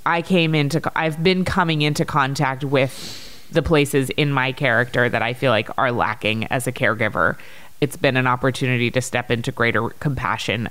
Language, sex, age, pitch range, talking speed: English, female, 30-49, 120-145 Hz, 180 wpm